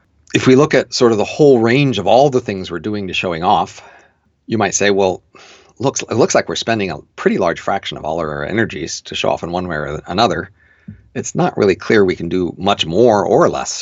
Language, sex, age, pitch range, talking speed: English, male, 50-69, 90-115 Hz, 240 wpm